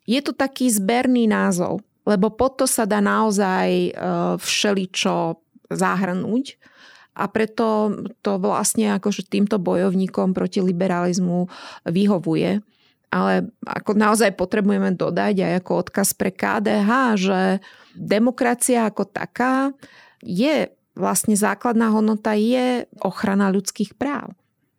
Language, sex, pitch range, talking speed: Slovak, female, 185-220 Hz, 110 wpm